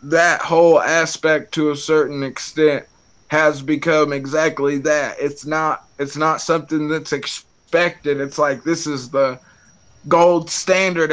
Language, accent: English, American